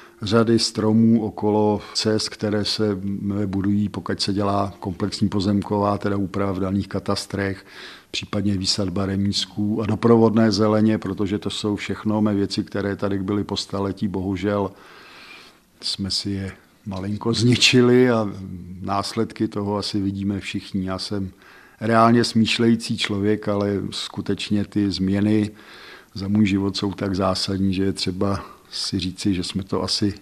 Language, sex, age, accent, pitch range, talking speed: Czech, male, 50-69, native, 100-110 Hz, 135 wpm